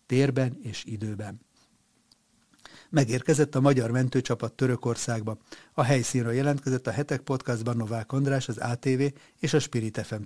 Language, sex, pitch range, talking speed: Hungarian, male, 115-135 Hz, 130 wpm